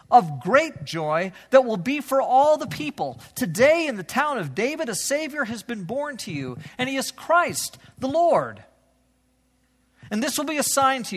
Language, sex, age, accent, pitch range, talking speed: English, male, 40-59, American, 160-260 Hz, 195 wpm